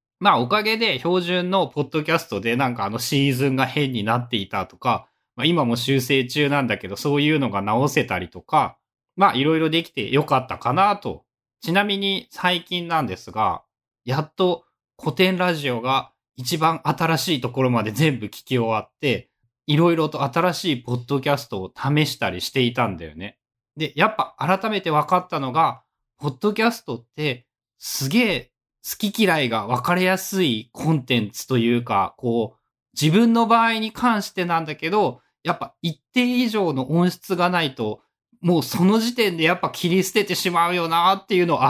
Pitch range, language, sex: 125-185 Hz, Japanese, male